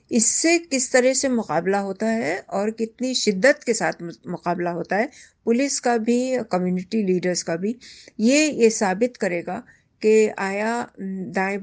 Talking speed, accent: 150 wpm, native